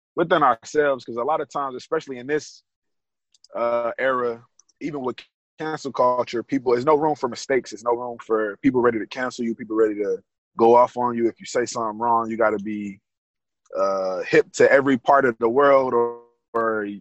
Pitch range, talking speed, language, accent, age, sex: 110-130 Hz, 200 wpm, English, American, 20-39, male